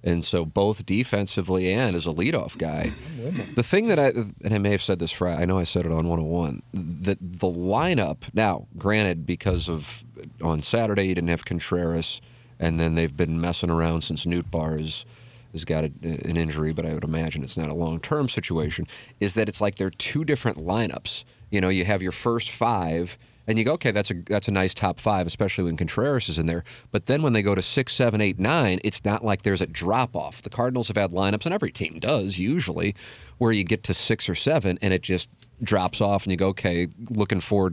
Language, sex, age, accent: English, male, 40-59, American